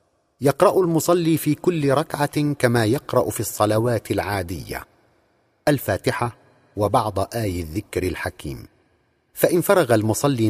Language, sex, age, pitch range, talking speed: Arabic, male, 50-69, 105-130 Hz, 105 wpm